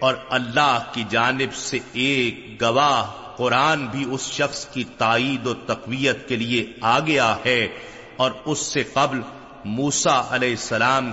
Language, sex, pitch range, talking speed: Urdu, male, 120-145 Hz, 145 wpm